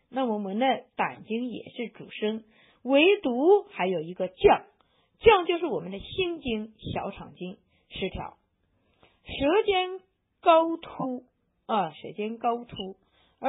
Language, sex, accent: Chinese, female, native